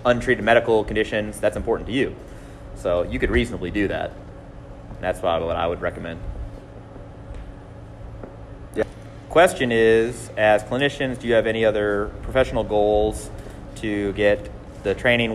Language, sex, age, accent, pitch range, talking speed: English, male, 30-49, American, 95-120 Hz, 135 wpm